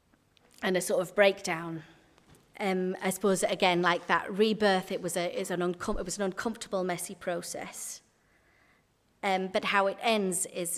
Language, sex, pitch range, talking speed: English, female, 180-235 Hz, 165 wpm